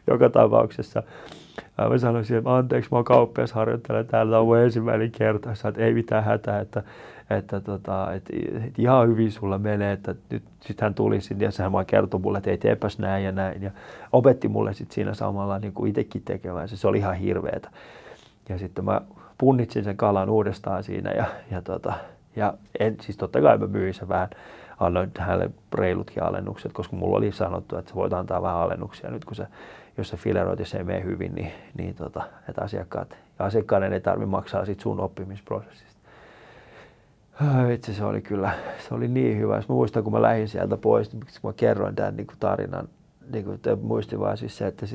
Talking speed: 180 wpm